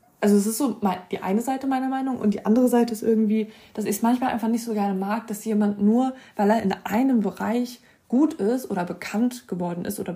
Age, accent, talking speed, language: 20-39, German, 230 wpm, German